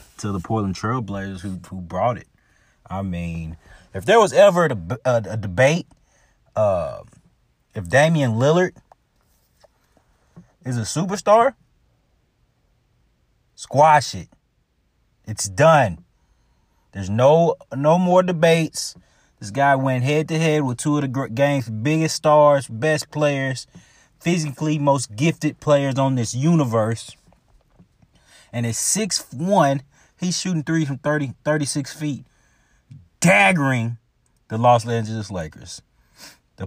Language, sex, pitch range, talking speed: English, male, 110-155 Hz, 120 wpm